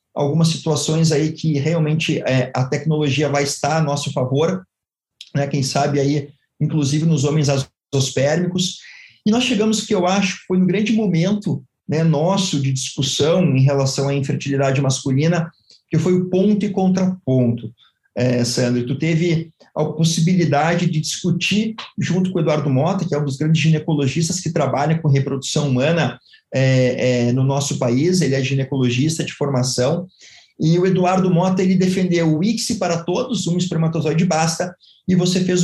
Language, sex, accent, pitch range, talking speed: Portuguese, male, Brazilian, 145-180 Hz, 165 wpm